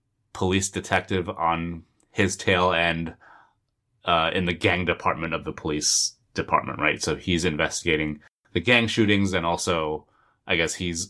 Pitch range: 90-115 Hz